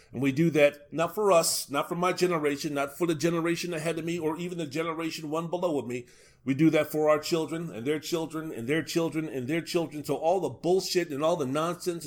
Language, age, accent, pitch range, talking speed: English, 40-59, American, 125-160 Hz, 245 wpm